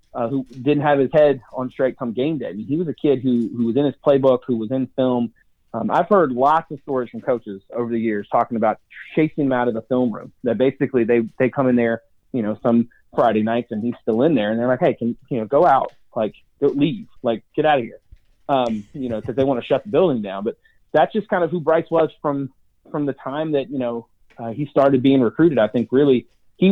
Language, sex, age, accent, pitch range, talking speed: English, male, 30-49, American, 115-140 Hz, 260 wpm